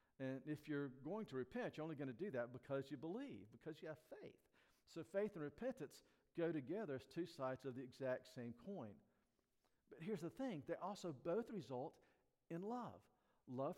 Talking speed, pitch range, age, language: 190 wpm, 125-165 Hz, 50-69, English